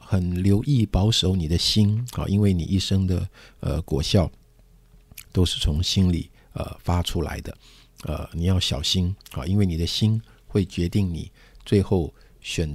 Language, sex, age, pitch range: Chinese, male, 50-69, 85-105 Hz